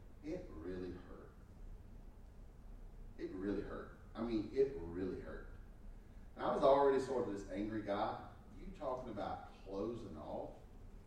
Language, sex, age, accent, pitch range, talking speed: English, male, 40-59, American, 95-120 Hz, 130 wpm